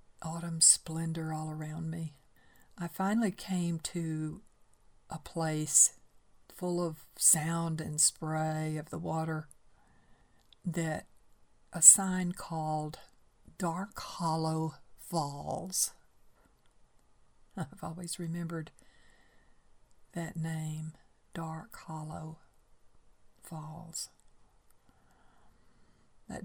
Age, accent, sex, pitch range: 60-79, American, female, 155-170 Hz